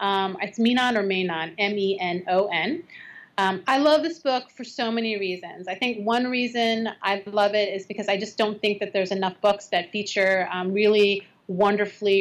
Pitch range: 195-235 Hz